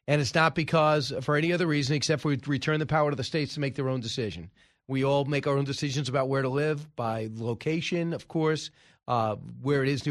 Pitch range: 135-165 Hz